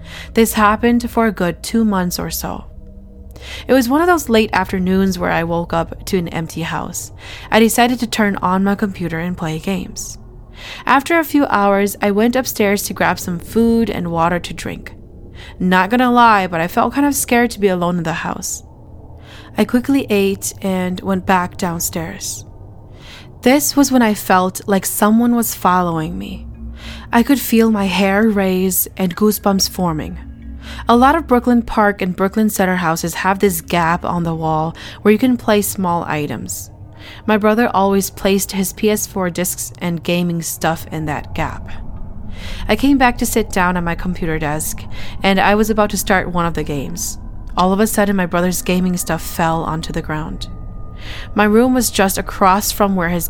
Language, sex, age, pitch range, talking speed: English, female, 10-29, 160-215 Hz, 185 wpm